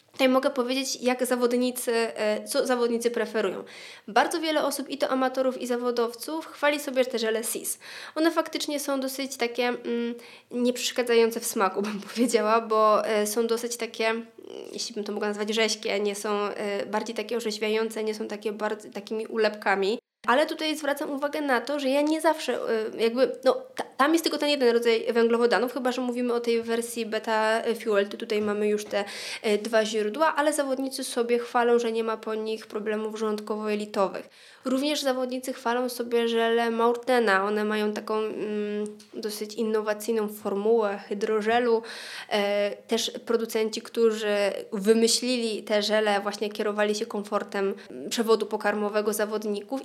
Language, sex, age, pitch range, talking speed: Polish, female, 20-39, 215-245 Hz, 150 wpm